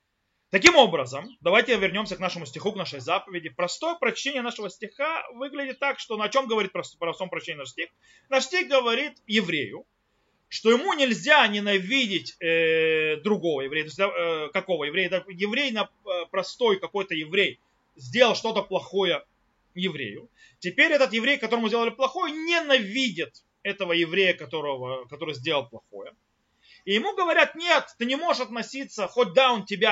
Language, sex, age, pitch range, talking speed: Russian, male, 30-49, 185-270 Hz, 150 wpm